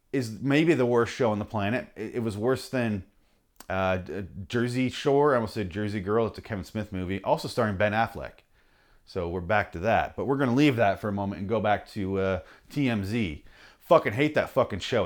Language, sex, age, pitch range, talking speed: English, male, 30-49, 110-165 Hz, 215 wpm